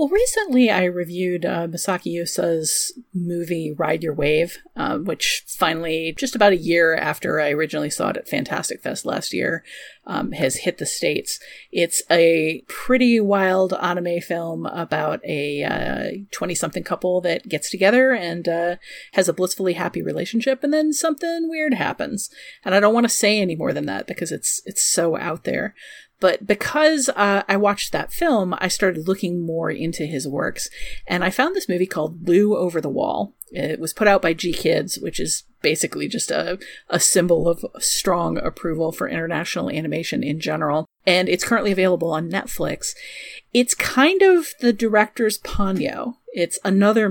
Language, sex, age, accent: English, female, 30-49, American